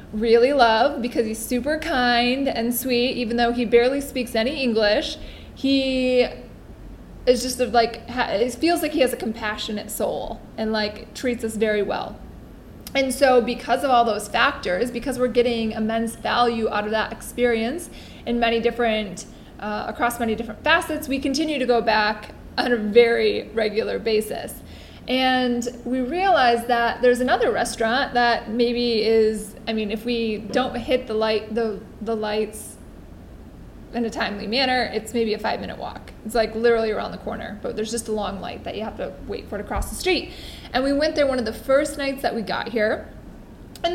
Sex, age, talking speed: female, 20-39, 185 wpm